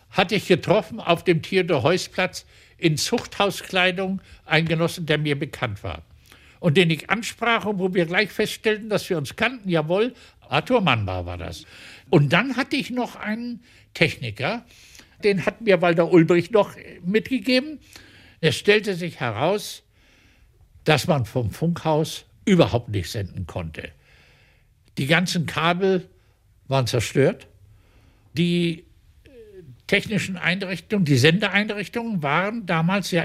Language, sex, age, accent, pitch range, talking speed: German, male, 60-79, German, 110-185 Hz, 130 wpm